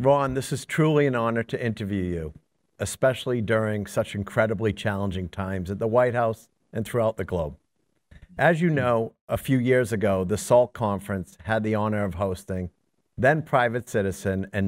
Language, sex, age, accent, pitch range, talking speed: English, male, 50-69, American, 100-135 Hz, 170 wpm